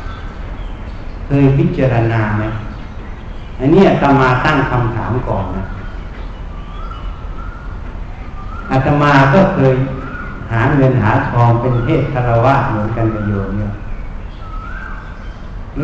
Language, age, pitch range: Thai, 60-79, 95-140 Hz